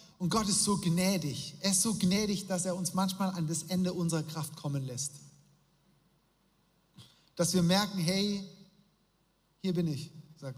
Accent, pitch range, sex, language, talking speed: German, 155-190 Hz, male, German, 160 wpm